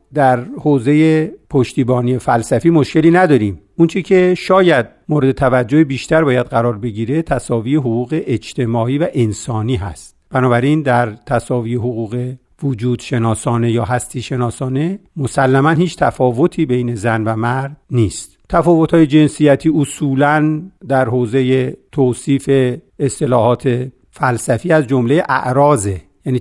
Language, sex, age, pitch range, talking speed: Persian, male, 50-69, 120-145 Hz, 110 wpm